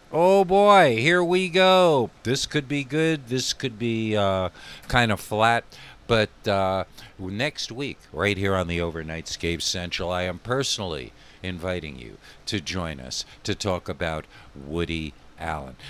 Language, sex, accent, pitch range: English, male, American, 90-115 Hz